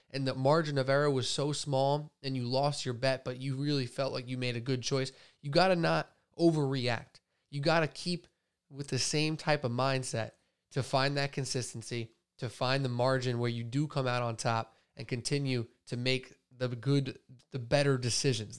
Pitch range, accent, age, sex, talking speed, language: 120-140 Hz, American, 20-39, male, 200 wpm, English